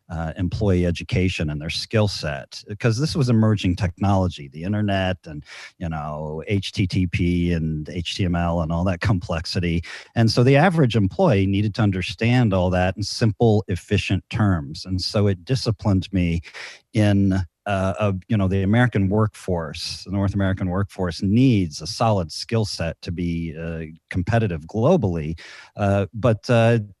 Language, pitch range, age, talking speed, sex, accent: English, 90-115 Hz, 40-59, 145 wpm, male, American